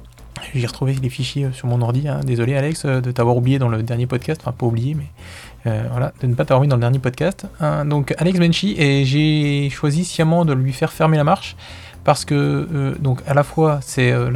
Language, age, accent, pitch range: French, 20-39, French, 125-160 Hz